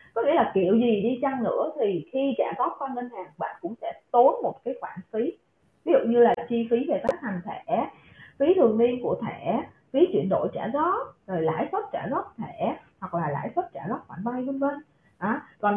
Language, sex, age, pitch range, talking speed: Vietnamese, female, 20-39, 200-280 Hz, 230 wpm